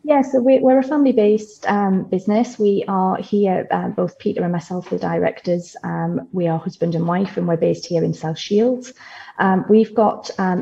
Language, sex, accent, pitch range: English, female, British, 170-210 Hz